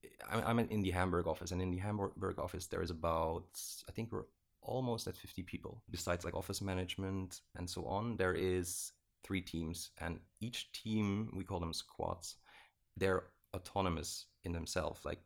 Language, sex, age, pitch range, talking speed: English, male, 30-49, 85-95 Hz, 170 wpm